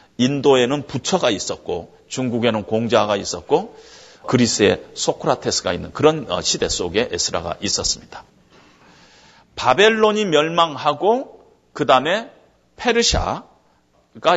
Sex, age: male, 40-59